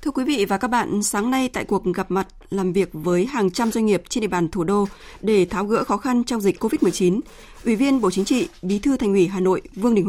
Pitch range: 185-235 Hz